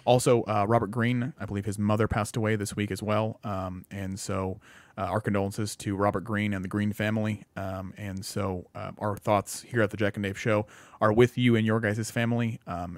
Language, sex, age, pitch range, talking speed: English, male, 30-49, 100-125 Hz, 220 wpm